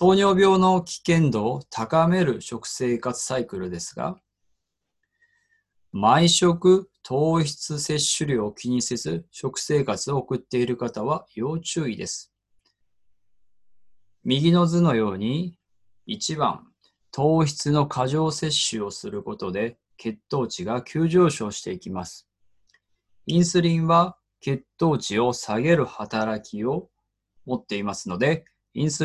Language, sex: Japanese, male